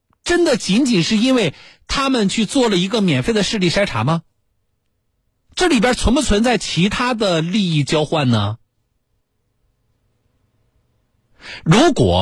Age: 50-69